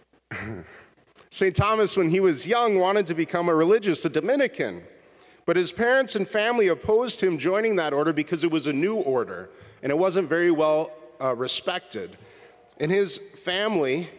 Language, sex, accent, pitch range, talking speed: English, male, American, 135-195 Hz, 165 wpm